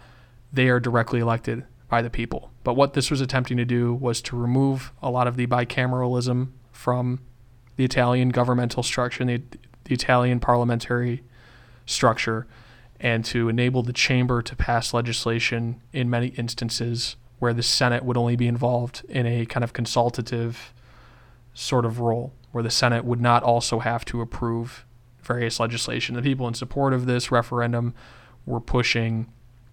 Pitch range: 120-125 Hz